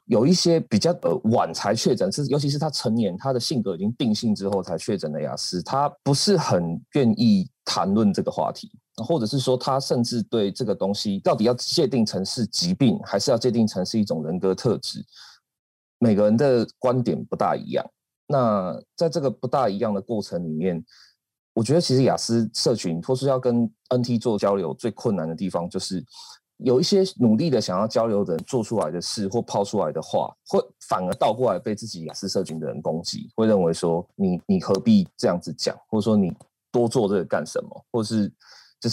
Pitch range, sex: 100-135 Hz, male